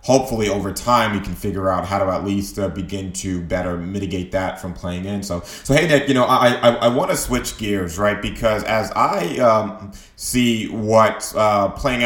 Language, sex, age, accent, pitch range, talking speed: English, male, 30-49, American, 100-120 Hz, 210 wpm